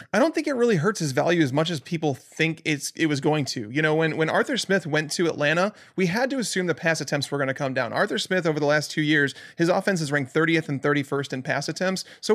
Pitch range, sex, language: 145-185 Hz, male, English